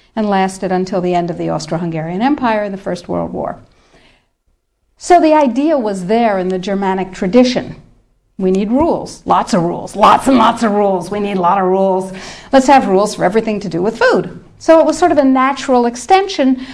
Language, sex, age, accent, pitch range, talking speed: English, female, 60-79, American, 190-265 Hz, 205 wpm